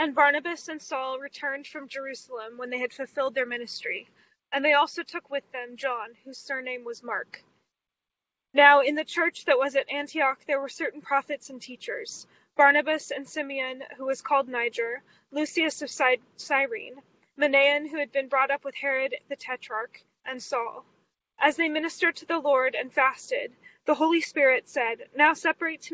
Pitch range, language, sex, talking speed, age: 260-300 Hz, English, female, 175 wpm, 20-39